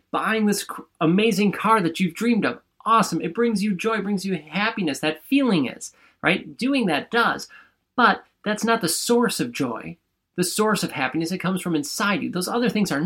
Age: 30-49